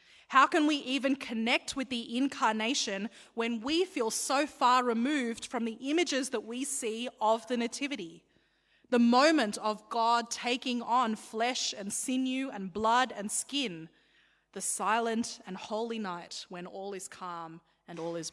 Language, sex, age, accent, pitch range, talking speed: English, female, 20-39, Australian, 205-260 Hz, 155 wpm